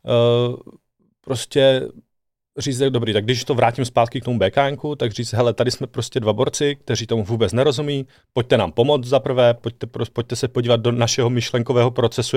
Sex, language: male, Czech